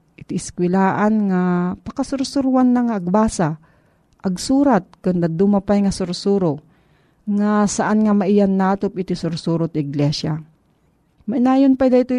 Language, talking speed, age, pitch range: Filipino, 125 wpm, 40-59, 165-210 Hz